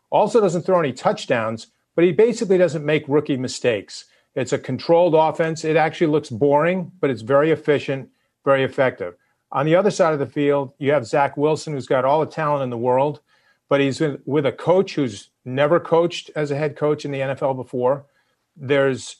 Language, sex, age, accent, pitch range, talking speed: English, male, 50-69, American, 130-155 Hz, 195 wpm